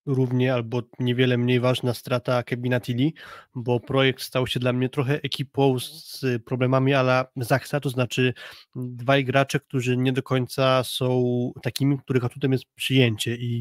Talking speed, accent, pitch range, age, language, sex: 150 wpm, native, 125-130 Hz, 20-39, Polish, male